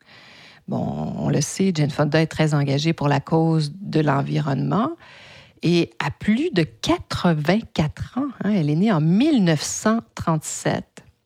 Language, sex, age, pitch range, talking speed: French, female, 50-69, 155-200 Hz, 140 wpm